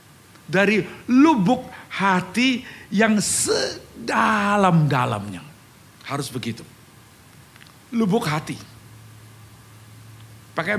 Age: 50-69